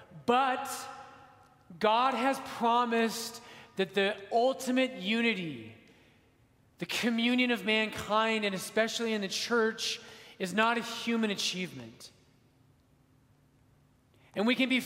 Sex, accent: male, American